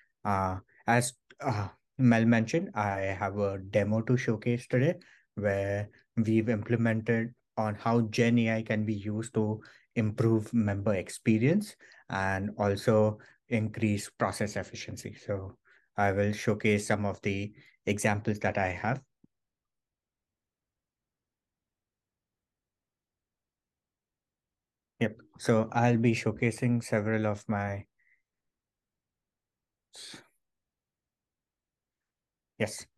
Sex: male